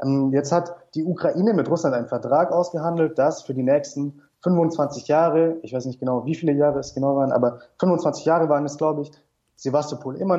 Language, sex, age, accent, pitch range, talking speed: German, male, 30-49, German, 135-170 Hz, 195 wpm